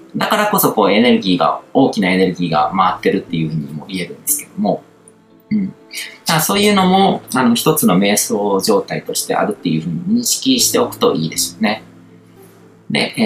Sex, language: male, Japanese